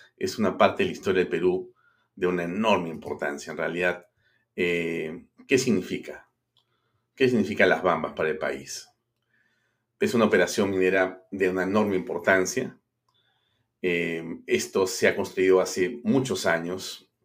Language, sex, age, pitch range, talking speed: Spanish, male, 40-59, 90-120 Hz, 140 wpm